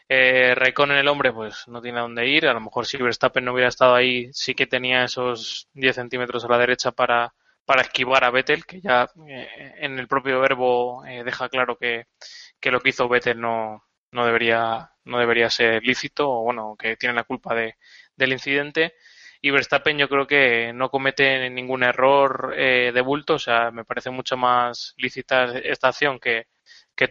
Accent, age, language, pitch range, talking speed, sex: Spanish, 20-39, Spanish, 120-130 Hz, 195 wpm, male